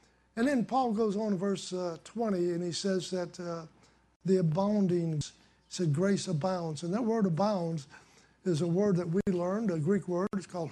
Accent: American